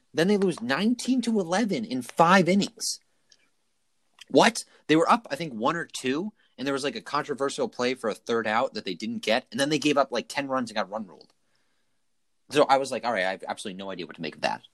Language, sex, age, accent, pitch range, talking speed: English, male, 30-49, American, 90-140 Hz, 250 wpm